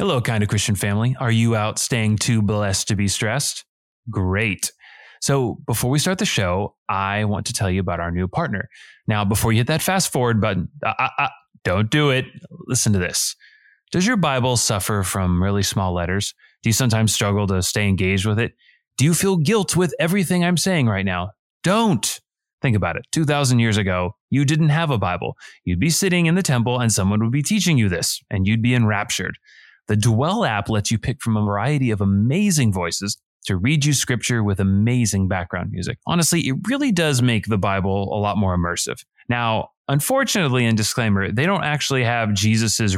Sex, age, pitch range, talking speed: male, 20-39, 100-145 Hz, 200 wpm